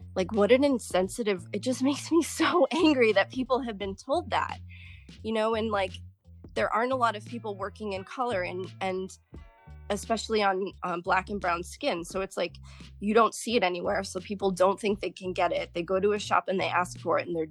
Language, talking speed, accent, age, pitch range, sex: English, 225 wpm, American, 20-39, 165-205 Hz, female